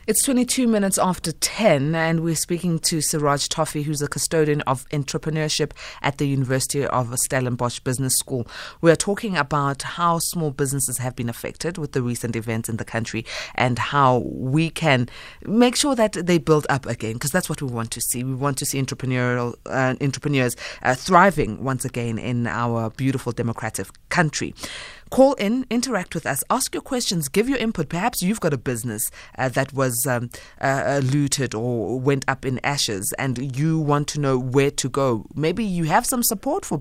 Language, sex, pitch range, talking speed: English, female, 125-165 Hz, 185 wpm